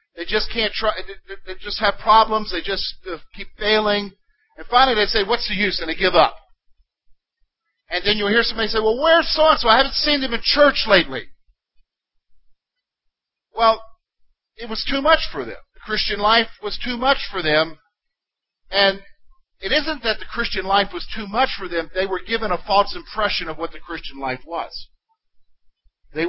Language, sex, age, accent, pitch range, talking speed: English, male, 50-69, American, 185-235 Hz, 185 wpm